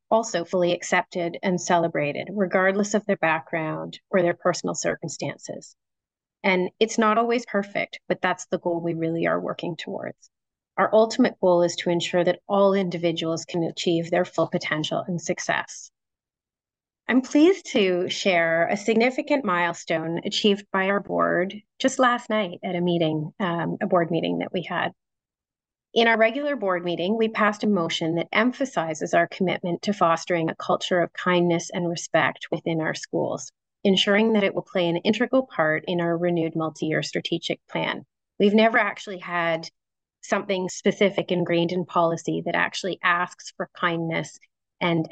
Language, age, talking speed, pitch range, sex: English, 30-49, 160 wpm, 170-205 Hz, female